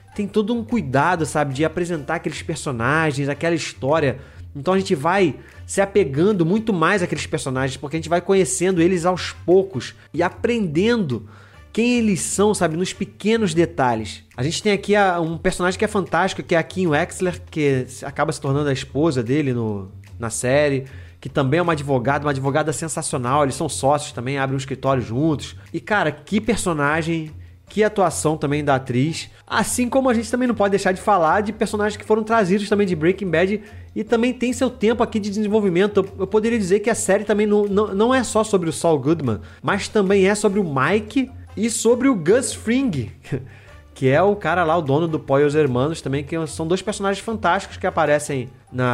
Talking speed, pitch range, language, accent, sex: 195 wpm, 145-210 Hz, Portuguese, Brazilian, male